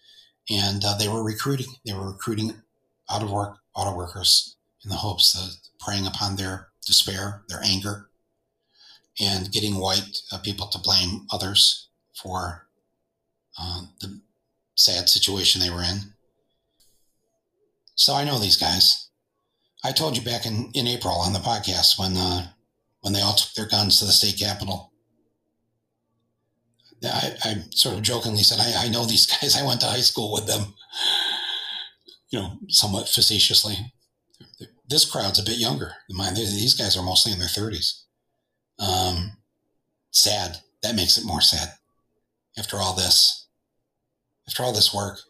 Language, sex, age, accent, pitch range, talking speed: English, male, 40-59, American, 95-115 Hz, 150 wpm